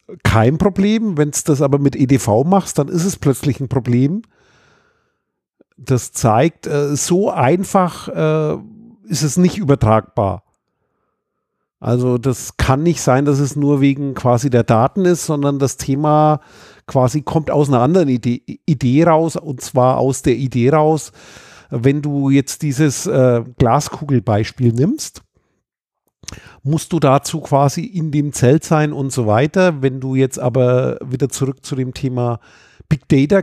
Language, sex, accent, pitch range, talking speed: German, male, German, 130-155 Hz, 145 wpm